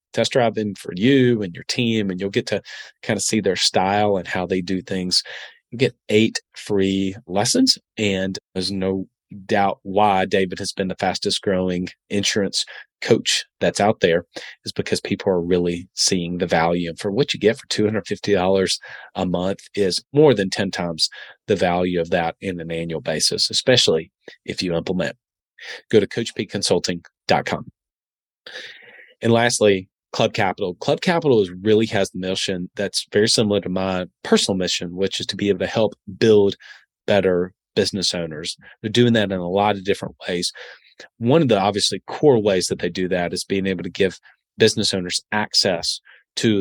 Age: 30-49